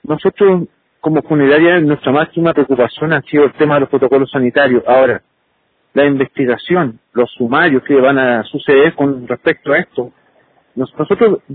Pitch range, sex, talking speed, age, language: 145-185 Hz, male, 145 wpm, 50-69, Spanish